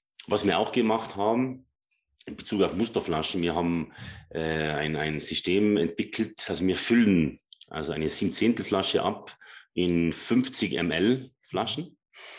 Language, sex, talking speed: German, male, 140 wpm